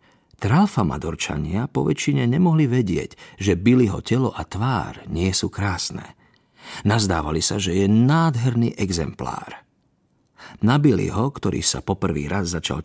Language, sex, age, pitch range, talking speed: Slovak, male, 50-69, 95-125 Hz, 125 wpm